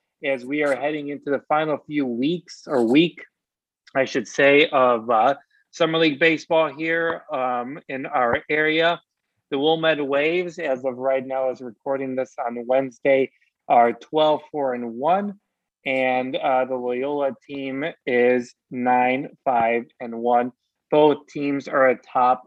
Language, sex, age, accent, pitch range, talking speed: English, male, 30-49, American, 120-145 Hz, 145 wpm